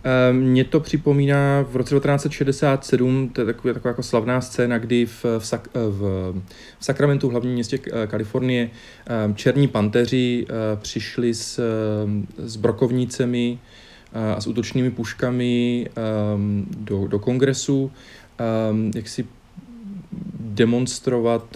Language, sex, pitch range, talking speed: Czech, male, 110-130 Hz, 125 wpm